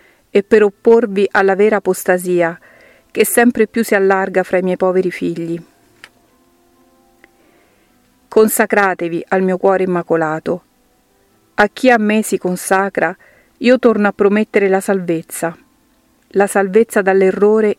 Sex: female